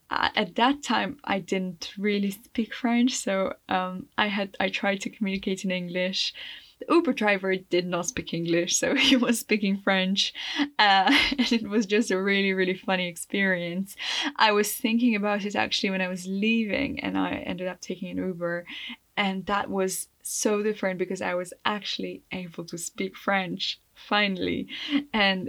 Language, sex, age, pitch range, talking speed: English, female, 10-29, 190-240 Hz, 170 wpm